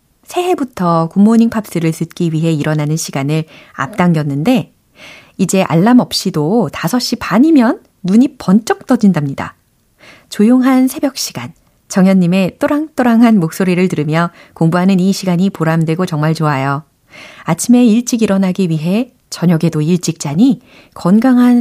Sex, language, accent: female, Korean, native